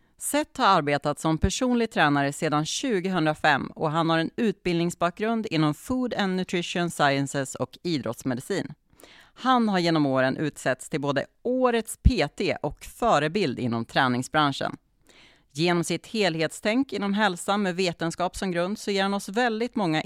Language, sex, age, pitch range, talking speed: Swedish, female, 30-49, 140-200 Hz, 145 wpm